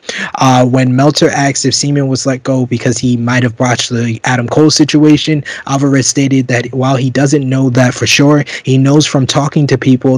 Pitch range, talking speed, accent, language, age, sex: 125-140 Hz, 200 wpm, American, English, 20-39, male